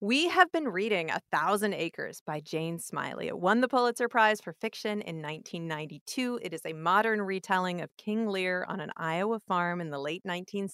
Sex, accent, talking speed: female, American, 190 wpm